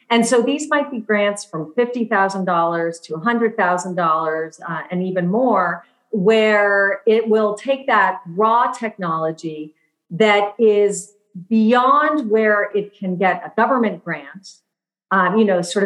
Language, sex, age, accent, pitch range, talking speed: English, female, 40-59, American, 175-225 Hz, 130 wpm